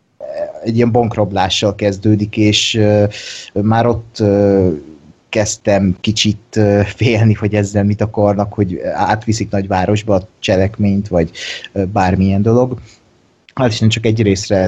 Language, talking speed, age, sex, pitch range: Hungarian, 125 wpm, 30-49, male, 100-115 Hz